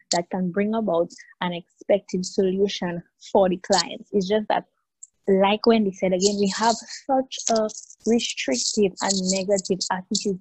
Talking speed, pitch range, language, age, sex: 145 wpm, 185-230 Hz, English, 20-39, female